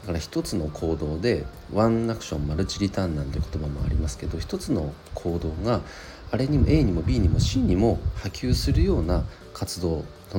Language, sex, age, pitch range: Japanese, male, 40-59, 80-100 Hz